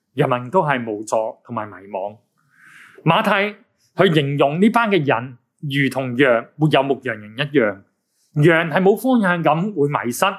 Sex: male